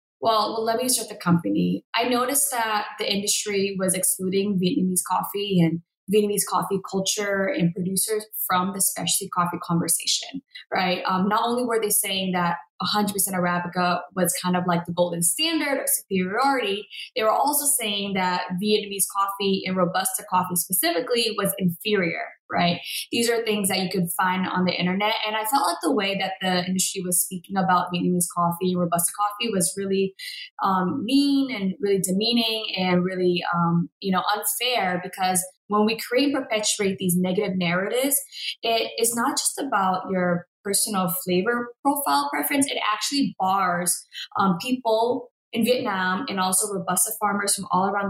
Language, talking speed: English, 165 wpm